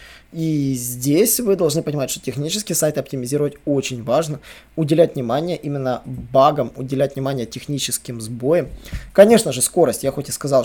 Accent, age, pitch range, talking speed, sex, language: native, 20-39, 135-165 Hz, 145 wpm, male, Russian